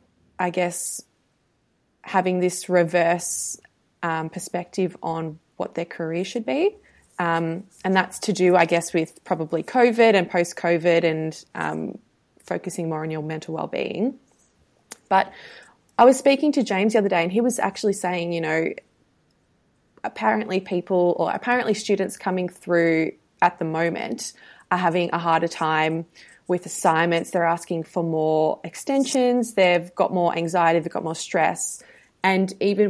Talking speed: 150 wpm